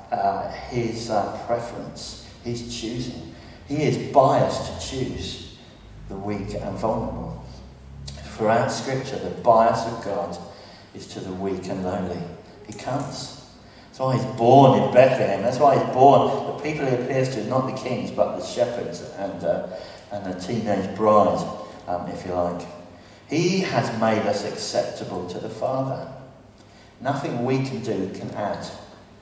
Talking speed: 150 wpm